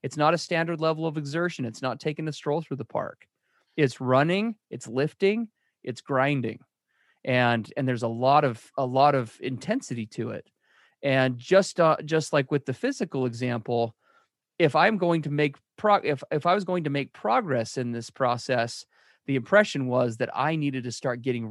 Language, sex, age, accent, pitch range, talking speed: English, male, 30-49, American, 120-150 Hz, 190 wpm